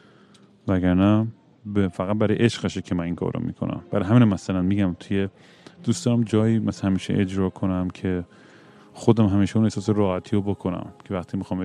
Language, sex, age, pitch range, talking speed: Persian, male, 30-49, 95-115 Hz, 170 wpm